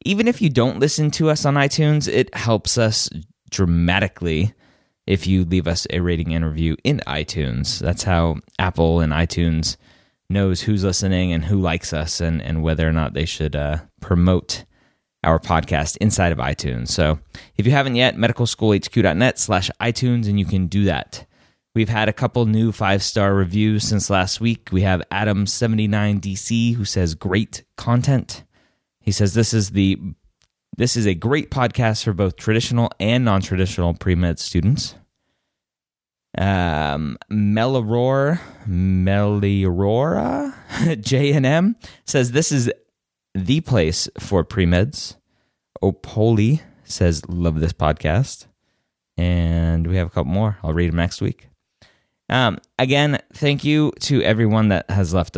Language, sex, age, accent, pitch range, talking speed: English, male, 20-39, American, 85-115 Hz, 150 wpm